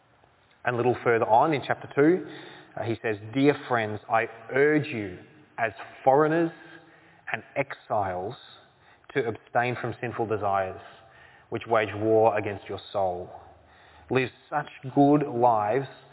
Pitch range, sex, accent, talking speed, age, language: 110-140 Hz, male, Australian, 125 wpm, 20-39, English